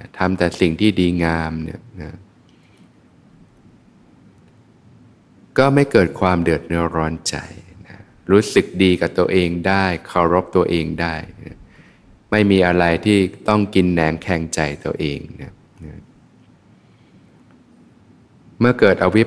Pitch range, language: 85-100 Hz, Thai